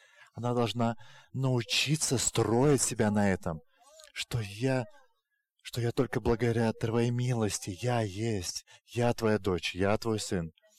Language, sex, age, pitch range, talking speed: English, male, 30-49, 110-135 Hz, 120 wpm